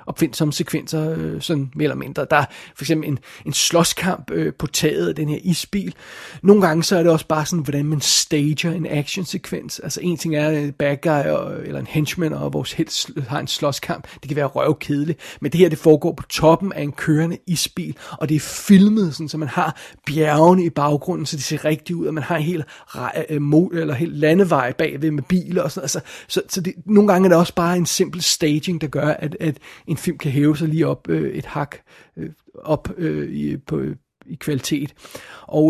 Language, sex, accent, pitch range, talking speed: Danish, male, native, 145-170 Hz, 225 wpm